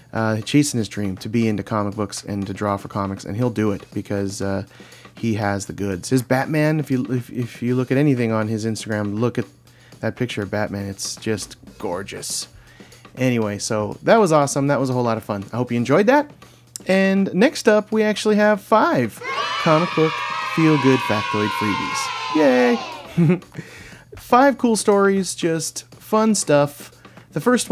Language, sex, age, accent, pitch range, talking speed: English, male, 30-49, American, 110-175 Hz, 185 wpm